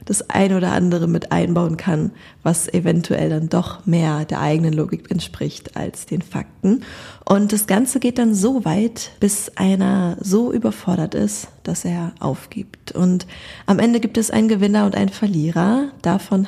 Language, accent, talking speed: German, German, 165 wpm